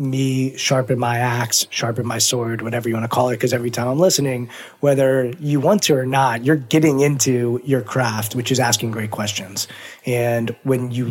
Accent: American